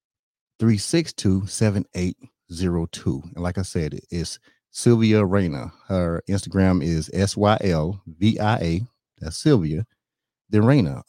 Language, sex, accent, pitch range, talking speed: English, male, American, 85-110 Hz, 150 wpm